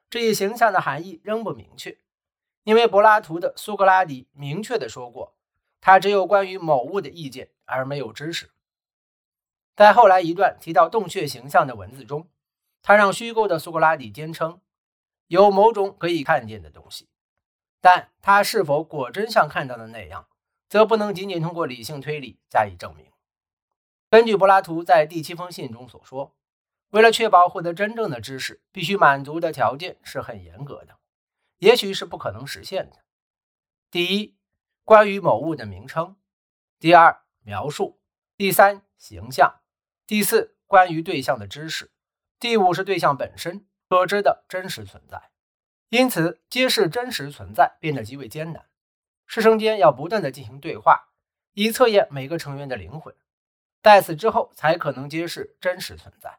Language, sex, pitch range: Chinese, male, 145-205 Hz